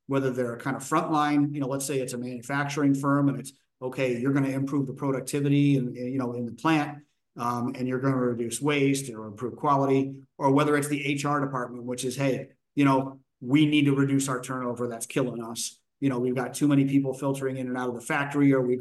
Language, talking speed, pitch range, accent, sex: English, 240 wpm, 125-145 Hz, American, male